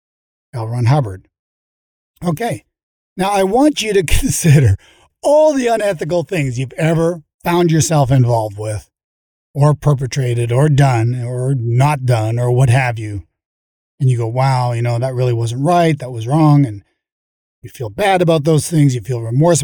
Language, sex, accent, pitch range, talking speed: English, male, American, 125-175 Hz, 165 wpm